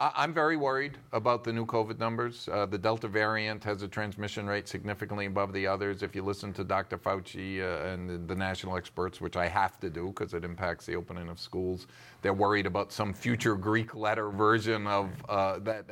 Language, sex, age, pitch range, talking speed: English, male, 50-69, 95-110 Hz, 205 wpm